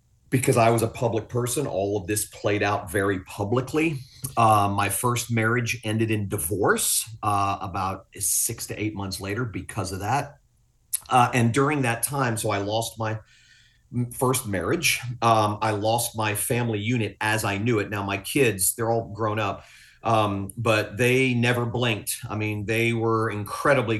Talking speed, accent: 170 wpm, American